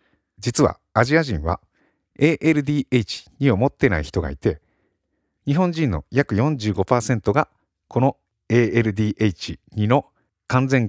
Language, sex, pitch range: Japanese, male, 95-130 Hz